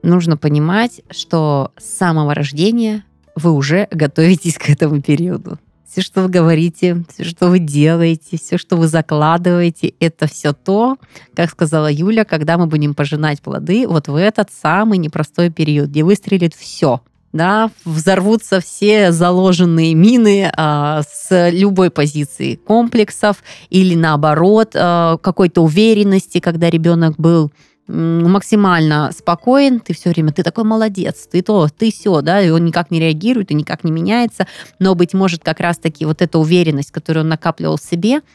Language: Russian